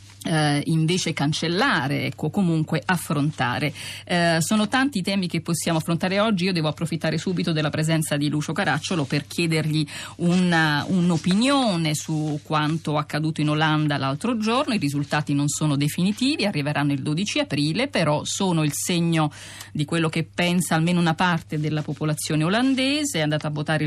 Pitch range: 150-175 Hz